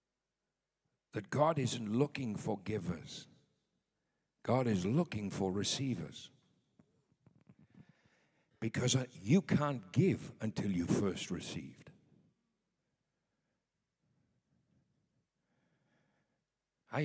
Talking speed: 70 wpm